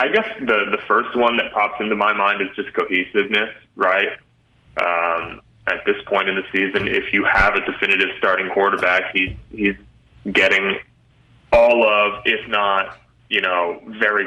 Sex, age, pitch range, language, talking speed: male, 20-39, 90-120 Hz, English, 165 wpm